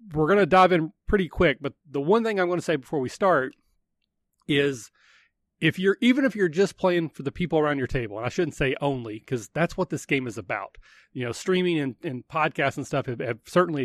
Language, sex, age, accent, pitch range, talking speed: English, male, 30-49, American, 135-180 Hz, 245 wpm